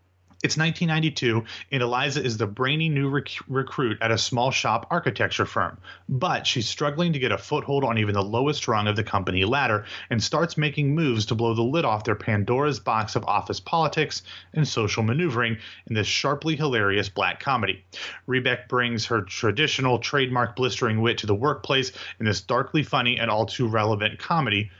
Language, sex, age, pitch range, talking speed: English, male, 30-49, 110-145 Hz, 180 wpm